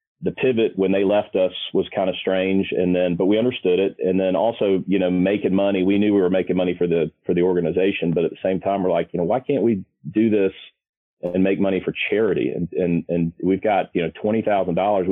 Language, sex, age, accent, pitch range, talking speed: English, male, 40-59, American, 90-105 Hz, 240 wpm